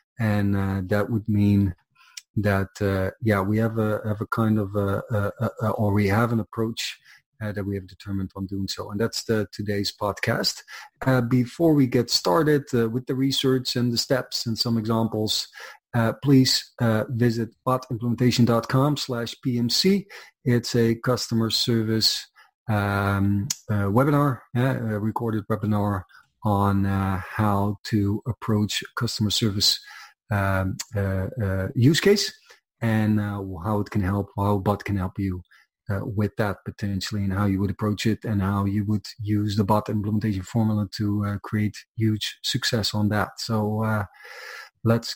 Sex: male